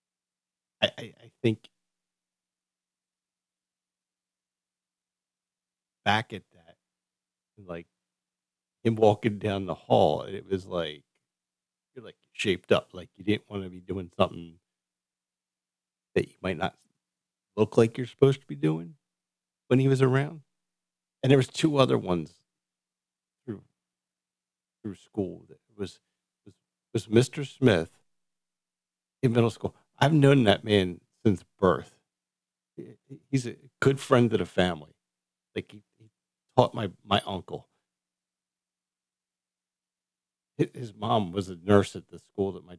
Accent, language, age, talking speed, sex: American, English, 50-69, 130 wpm, male